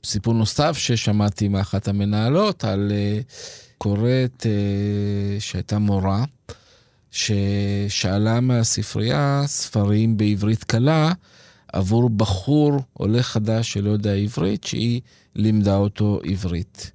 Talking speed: 95 wpm